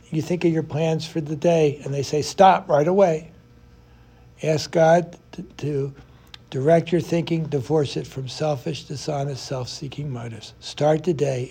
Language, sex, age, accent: English, male, 60-79, American